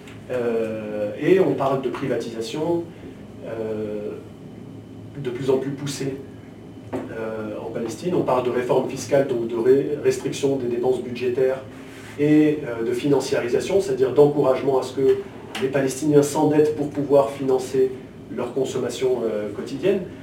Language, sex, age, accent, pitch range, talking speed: French, male, 40-59, French, 115-145 Hz, 135 wpm